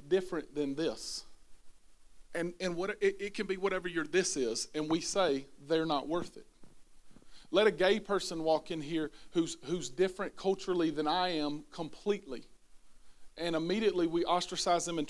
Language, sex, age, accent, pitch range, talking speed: English, male, 40-59, American, 175-245 Hz, 165 wpm